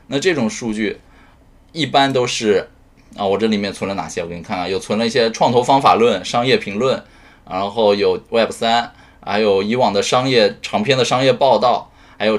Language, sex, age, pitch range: Chinese, male, 20-39, 110-175 Hz